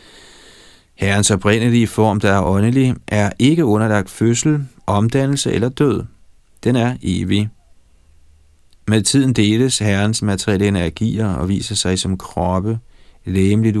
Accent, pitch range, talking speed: native, 95-115 Hz, 120 wpm